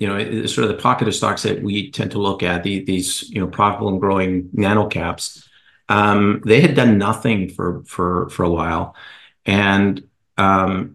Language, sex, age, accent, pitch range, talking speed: English, male, 50-69, American, 100-115 Hz, 195 wpm